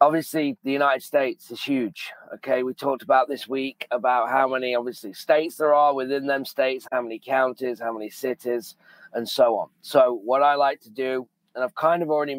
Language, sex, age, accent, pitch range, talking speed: English, male, 30-49, British, 125-150 Hz, 205 wpm